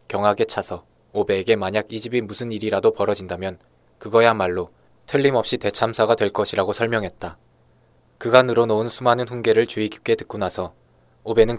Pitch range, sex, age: 80-115 Hz, male, 20-39